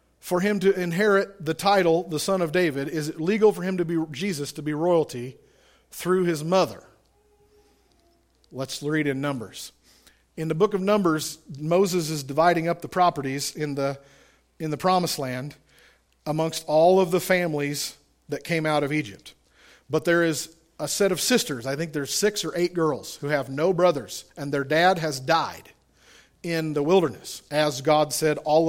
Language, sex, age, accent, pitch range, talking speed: English, male, 50-69, American, 140-175 Hz, 180 wpm